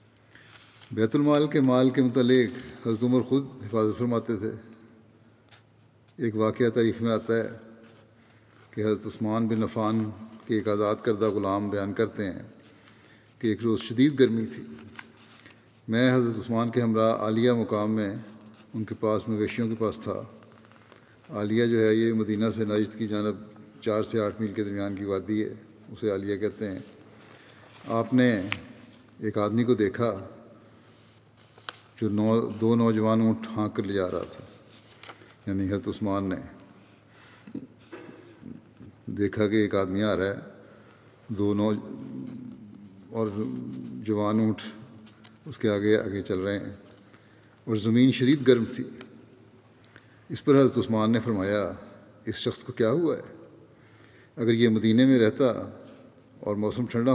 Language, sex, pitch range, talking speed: Urdu, male, 105-115 Hz, 140 wpm